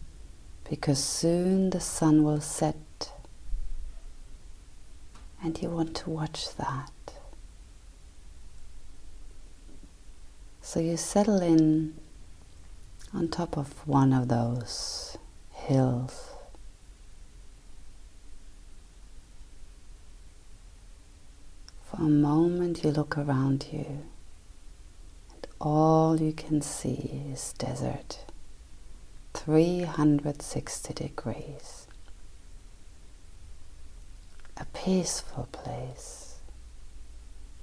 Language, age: English, 40-59